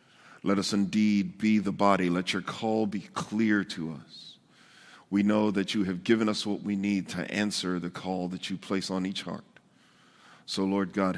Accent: American